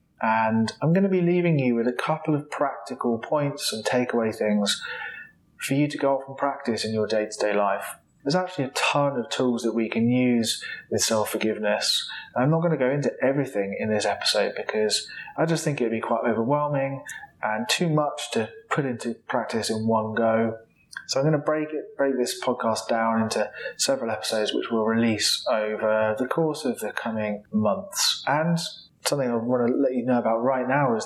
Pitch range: 110-145 Hz